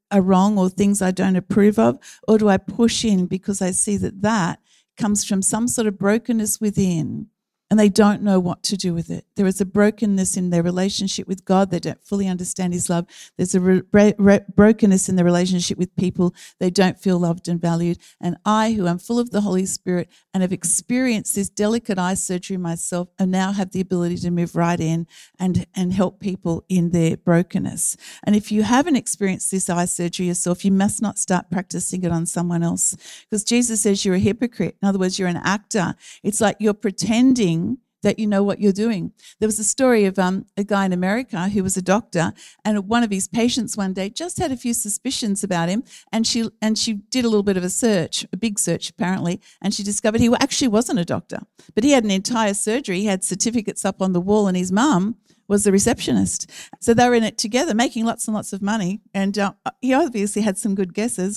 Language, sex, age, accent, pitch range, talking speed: English, female, 50-69, Australian, 185-215 Hz, 220 wpm